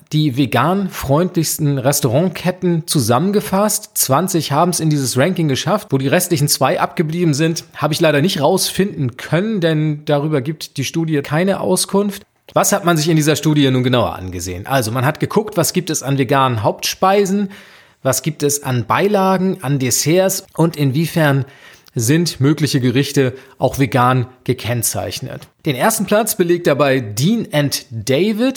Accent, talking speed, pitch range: German, 155 wpm, 135-175 Hz